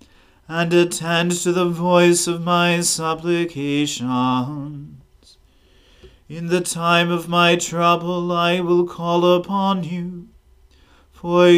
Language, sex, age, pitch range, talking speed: English, male, 40-59, 145-175 Hz, 105 wpm